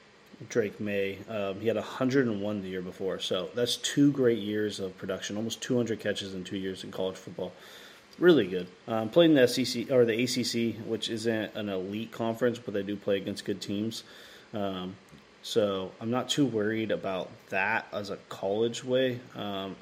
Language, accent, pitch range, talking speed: English, American, 105-125 Hz, 180 wpm